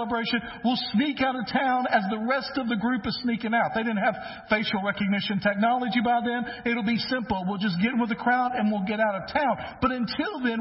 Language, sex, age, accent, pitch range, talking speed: English, male, 50-69, American, 145-235 Hz, 240 wpm